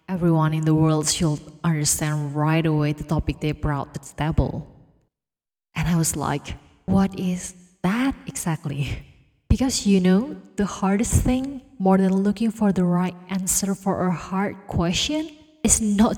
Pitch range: 170-210 Hz